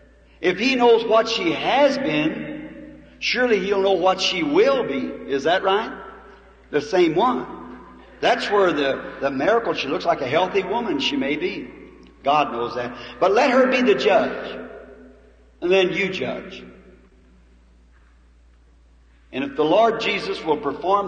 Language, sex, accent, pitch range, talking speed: English, male, American, 125-190 Hz, 155 wpm